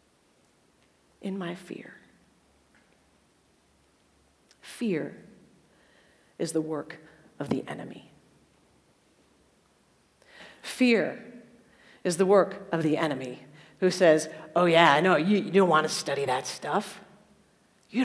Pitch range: 170-235 Hz